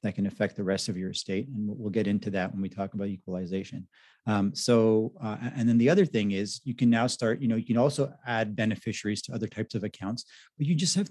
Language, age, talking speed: English, 30-49, 255 wpm